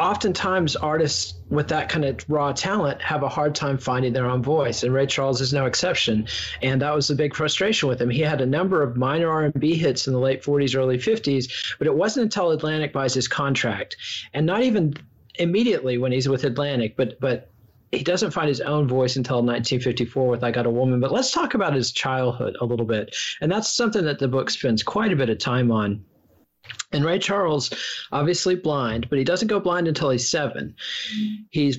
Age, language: 40-59, English